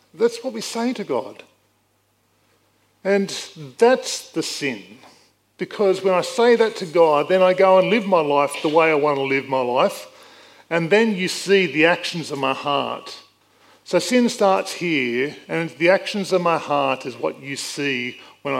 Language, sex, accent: English, male, Australian